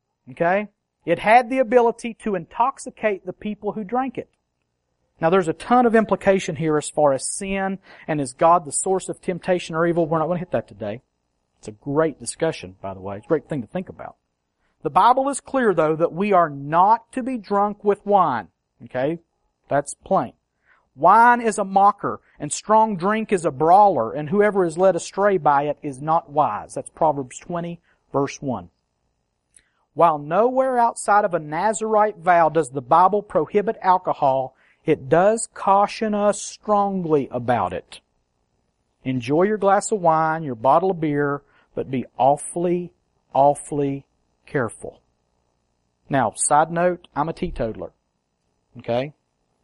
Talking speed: 165 wpm